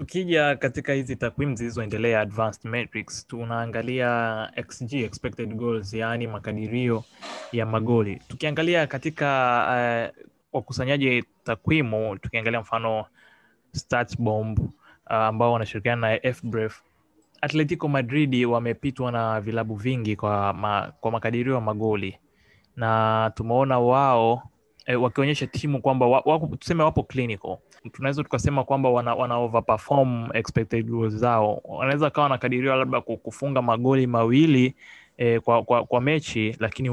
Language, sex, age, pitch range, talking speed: Swahili, male, 20-39, 110-130 Hz, 120 wpm